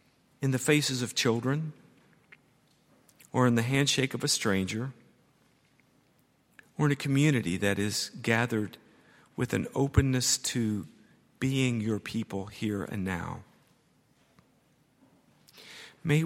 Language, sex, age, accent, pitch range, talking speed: English, male, 50-69, American, 100-135 Hz, 110 wpm